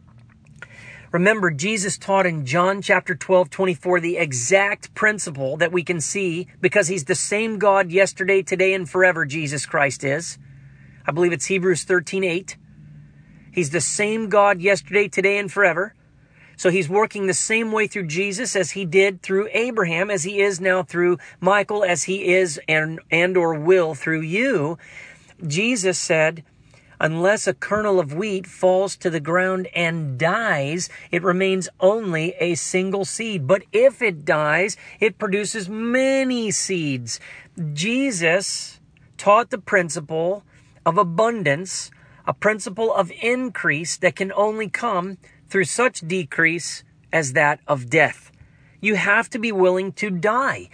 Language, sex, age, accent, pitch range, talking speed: English, male, 40-59, American, 160-205 Hz, 145 wpm